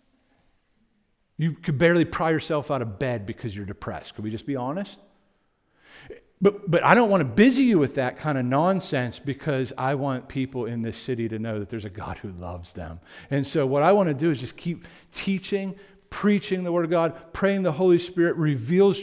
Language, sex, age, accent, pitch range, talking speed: English, male, 50-69, American, 125-180 Hz, 210 wpm